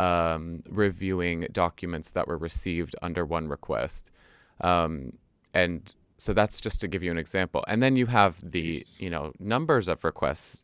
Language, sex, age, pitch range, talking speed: English, male, 20-39, 85-105 Hz, 165 wpm